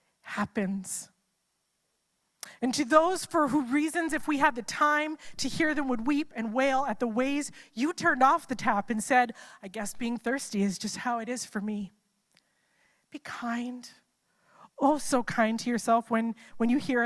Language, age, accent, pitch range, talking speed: English, 30-49, American, 220-290 Hz, 180 wpm